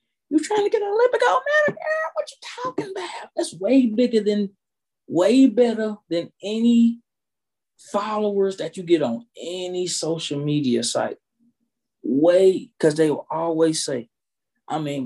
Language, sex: English, male